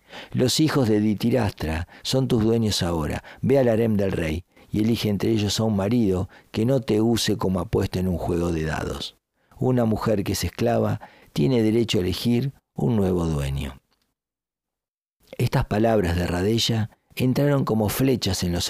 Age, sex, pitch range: 50-69, male, 85-110 Hz